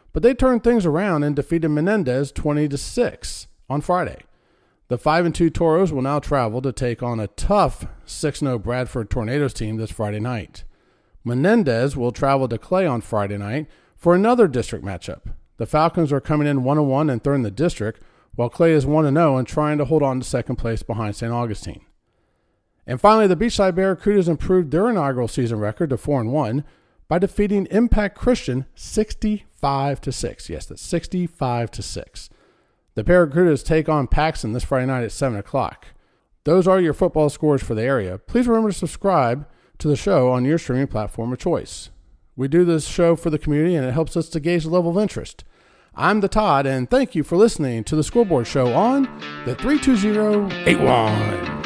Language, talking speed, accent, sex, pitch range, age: English, 185 wpm, American, male, 120-175 Hz, 40-59